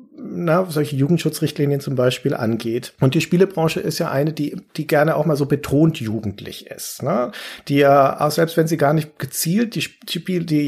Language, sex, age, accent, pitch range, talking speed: German, male, 40-59, German, 120-160 Hz, 195 wpm